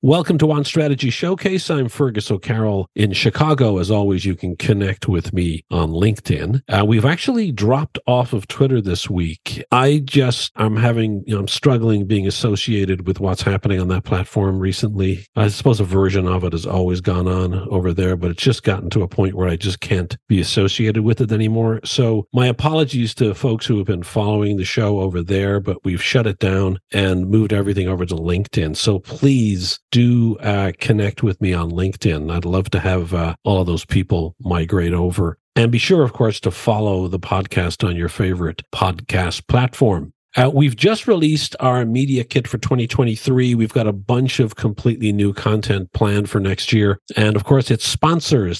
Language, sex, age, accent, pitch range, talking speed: English, male, 50-69, American, 95-120 Hz, 190 wpm